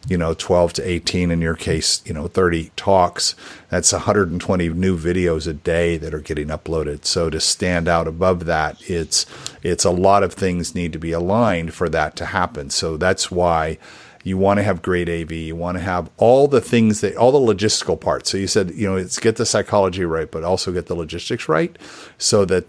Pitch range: 85-100 Hz